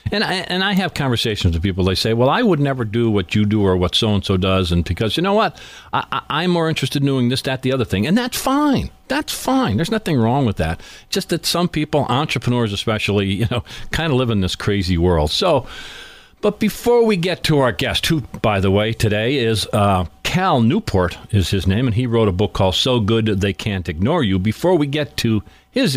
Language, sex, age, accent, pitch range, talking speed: English, male, 50-69, American, 100-155 Hz, 235 wpm